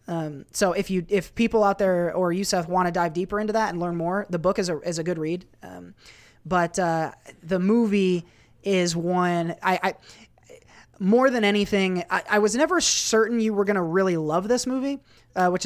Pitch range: 160-195 Hz